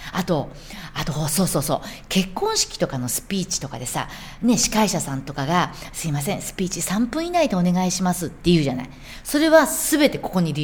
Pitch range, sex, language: 150-245 Hz, female, Japanese